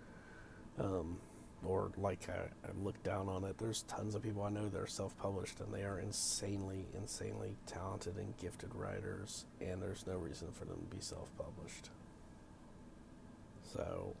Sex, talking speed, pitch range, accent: male, 155 wpm, 95-110 Hz, American